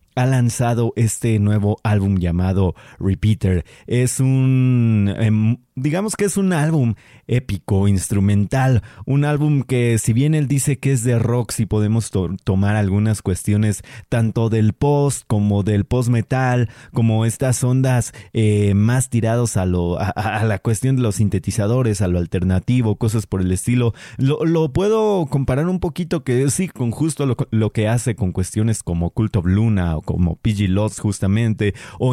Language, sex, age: Spanish, male, 30-49